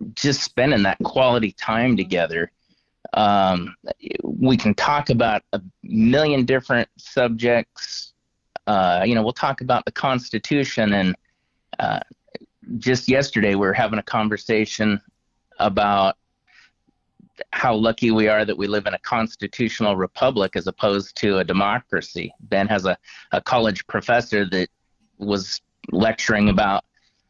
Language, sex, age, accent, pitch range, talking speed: English, male, 30-49, American, 95-115 Hz, 130 wpm